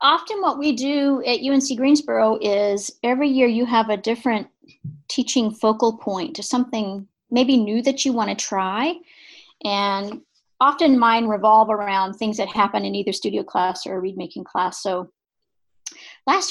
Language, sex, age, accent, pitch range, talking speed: English, female, 40-59, American, 200-255 Hz, 160 wpm